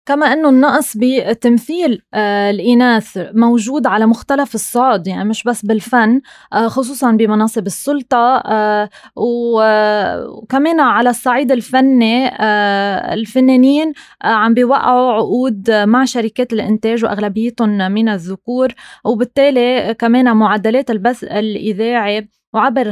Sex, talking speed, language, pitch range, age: female, 110 wpm, Arabic, 220-260 Hz, 20-39